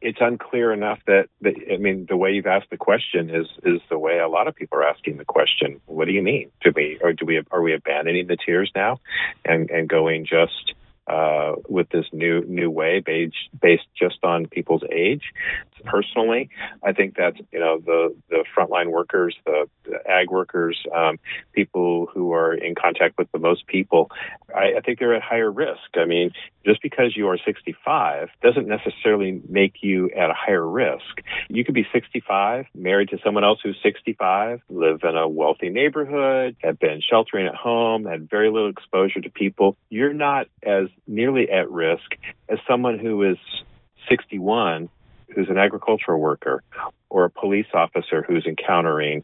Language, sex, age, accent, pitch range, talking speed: English, male, 40-59, American, 85-125 Hz, 180 wpm